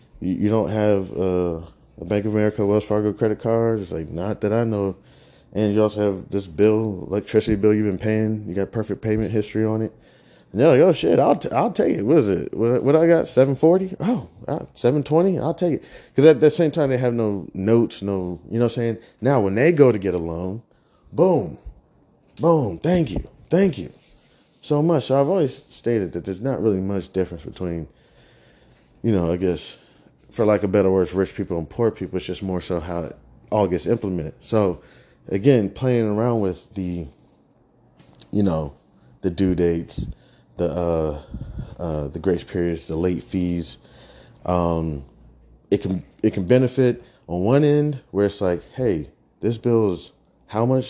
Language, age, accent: English, 20-39, American